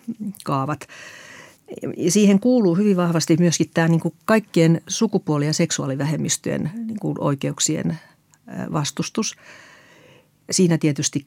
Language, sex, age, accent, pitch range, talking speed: Finnish, female, 50-69, native, 140-170 Hz, 100 wpm